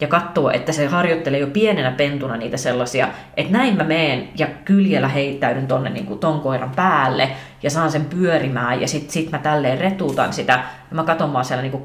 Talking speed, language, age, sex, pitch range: 195 wpm, Finnish, 20-39, female, 135-185 Hz